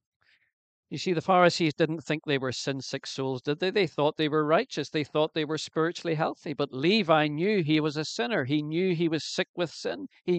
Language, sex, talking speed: English, male, 220 wpm